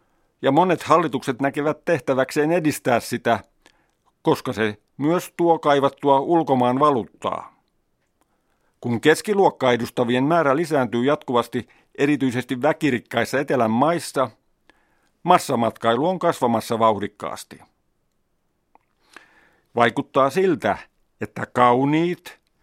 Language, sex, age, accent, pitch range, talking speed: Finnish, male, 50-69, native, 120-150 Hz, 80 wpm